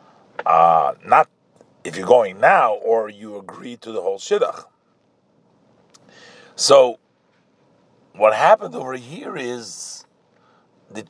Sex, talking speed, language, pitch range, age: male, 110 wpm, English, 120-175 Hz, 50-69